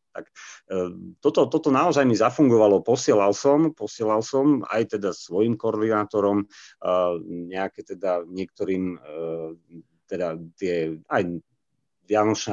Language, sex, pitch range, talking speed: Slovak, male, 85-105 Hz, 115 wpm